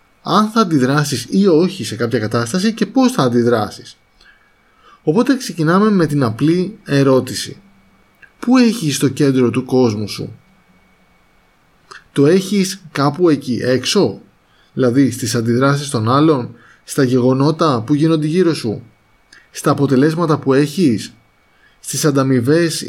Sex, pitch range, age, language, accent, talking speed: male, 125-160 Hz, 20-39, Greek, native, 125 wpm